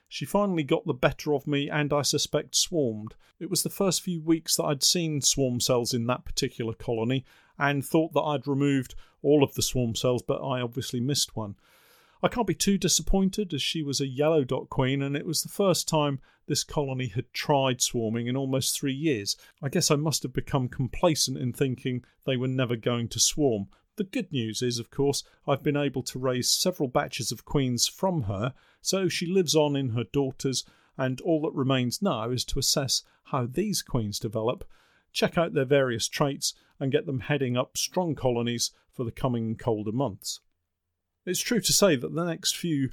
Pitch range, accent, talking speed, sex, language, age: 125-160 Hz, British, 200 wpm, male, English, 40-59